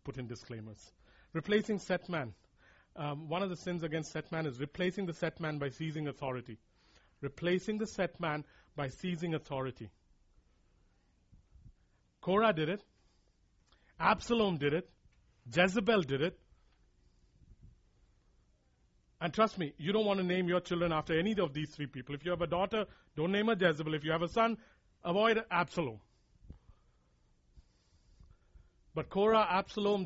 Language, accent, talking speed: English, Indian, 145 wpm